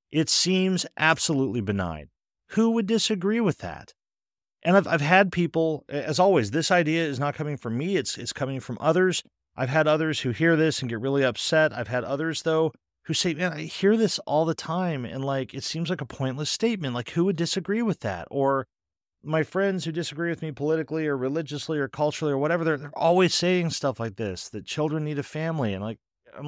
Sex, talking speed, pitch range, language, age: male, 215 wpm, 125-170 Hz, English, 40-59